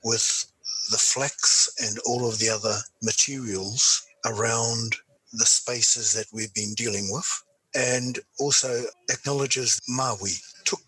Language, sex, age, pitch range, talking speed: English, male, 60-79, 110-130 Hz, 120 wpm